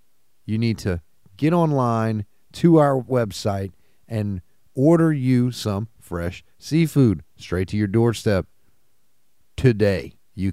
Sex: male